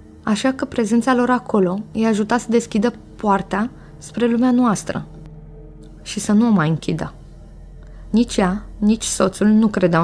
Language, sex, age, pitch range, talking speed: Romanian, female, 20-39, 185-225 Hz, 150 wpm